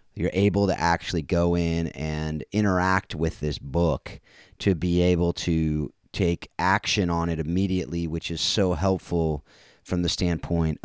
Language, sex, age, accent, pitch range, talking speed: English, male, 30-49, American, 85-105 Hz, 150 wpm